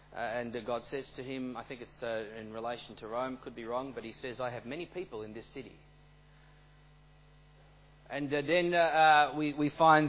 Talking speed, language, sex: 215 wpm, English, male